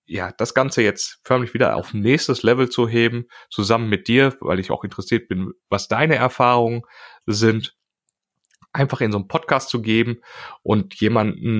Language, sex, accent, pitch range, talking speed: German, male, German, 105-130 Hz, 165 wpm